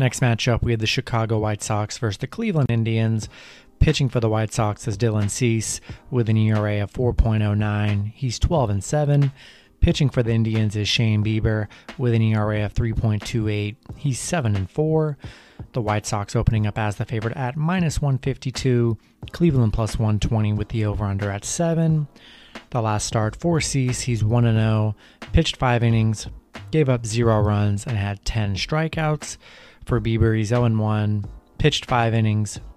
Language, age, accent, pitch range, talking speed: English, 30-49, American, 105-120 Hz, 155 wpm